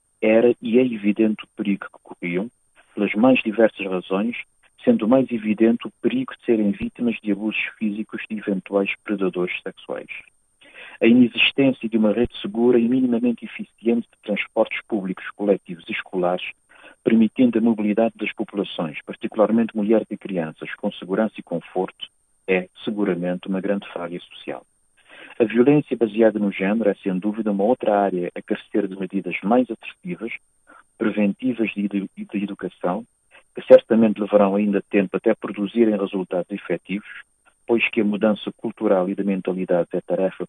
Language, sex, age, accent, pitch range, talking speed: Portuguese, male, 50-69, Portuguese, 95-115 Hz, 150 wpm